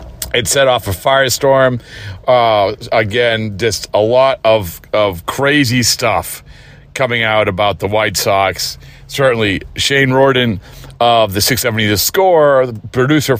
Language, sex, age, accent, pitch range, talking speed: English, male, 40-59, American, 105-145 Hz, 135 wpm